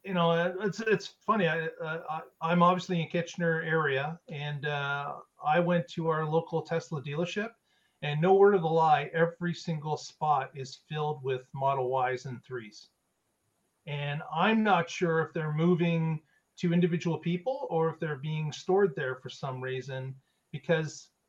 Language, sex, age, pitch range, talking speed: English, male, 40-59, 150-180 Hz, 160 wpm